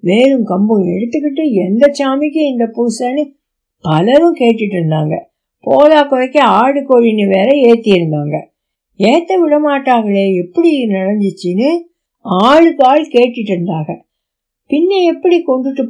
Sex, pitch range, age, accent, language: female, 205-290 Hz, 60-79, native, Tamil